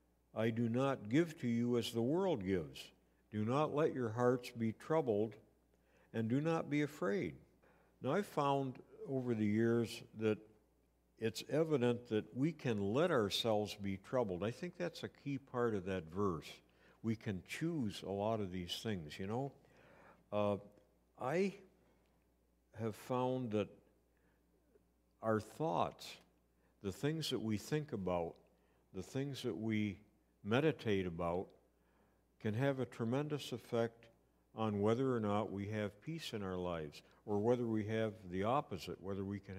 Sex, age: male, 60-79